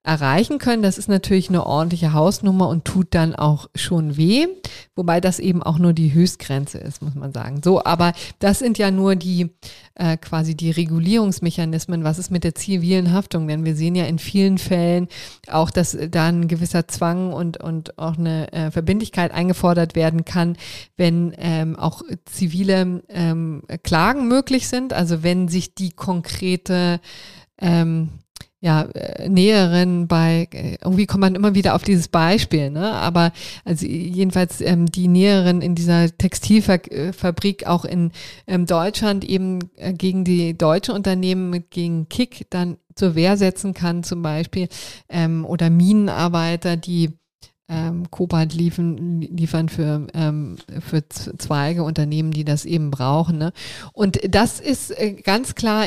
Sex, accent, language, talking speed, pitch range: female, German, German, 150 wpm, 165-190 Hz